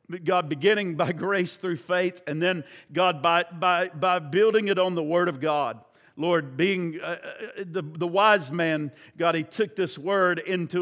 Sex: male